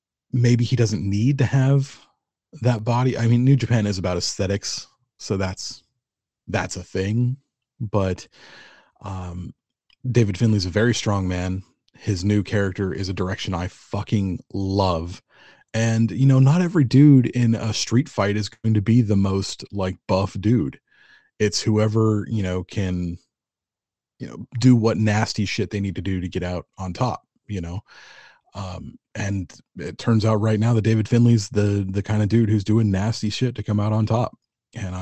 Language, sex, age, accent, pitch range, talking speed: English, male, 30-49, American, 95-115 Hz, 175 wpm